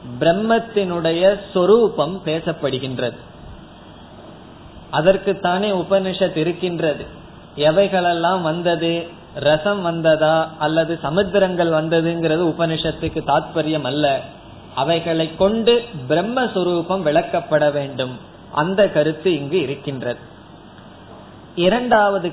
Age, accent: 20-39, native